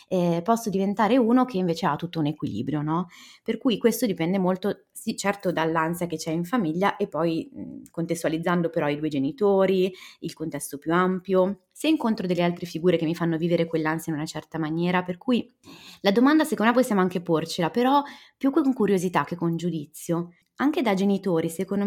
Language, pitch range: Italian, 165-200 Hz